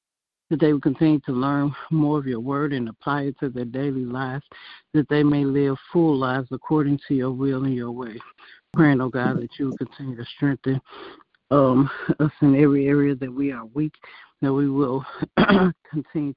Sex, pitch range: male, 130-150 Hz